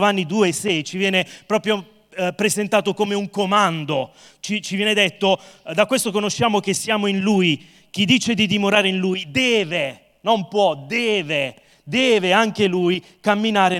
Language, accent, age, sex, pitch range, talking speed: English, Italian, 30-49, male, 165-210 Hz, 165 wpm